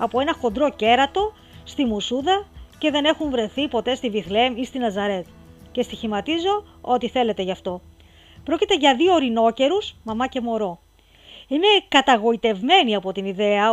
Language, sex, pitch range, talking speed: Greek, female, 210-270 Hz, 150 wpm